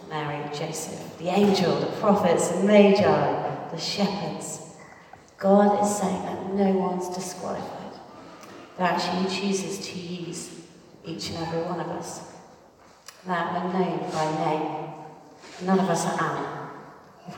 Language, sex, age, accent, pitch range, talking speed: English, female, 40-59, British, 160-195 Hz, 130 wpm